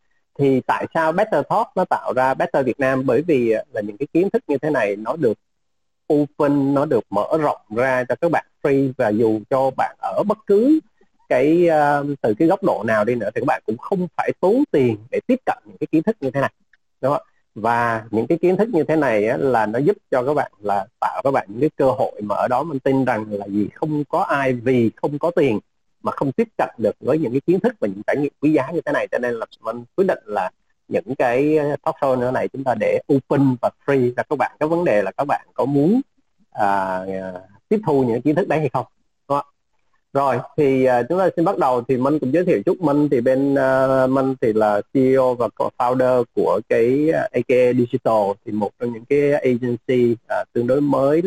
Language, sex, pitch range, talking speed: Vietnamese, male, 120-160 Hz, 240 wpm